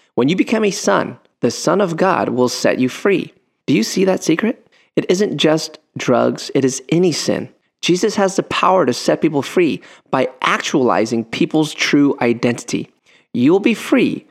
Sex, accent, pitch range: male, American, 120-170 Hz